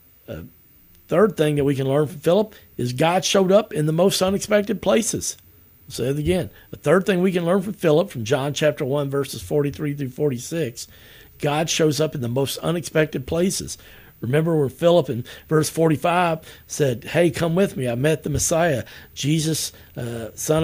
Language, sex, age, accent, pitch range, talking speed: English, male, 50-69, American, 125-175 Hz, 180 wpm